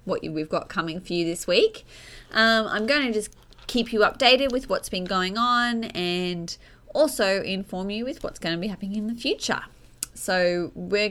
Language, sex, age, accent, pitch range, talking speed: English, female, 20-39, Australian, 165-225 Hz, 195 wpm